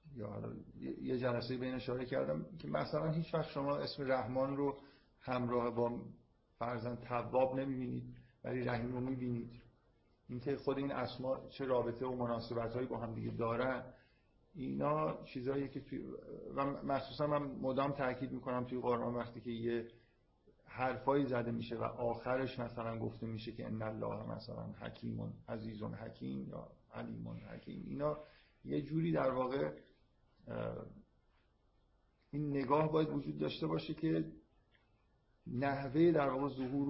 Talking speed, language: 135 wpm, Persian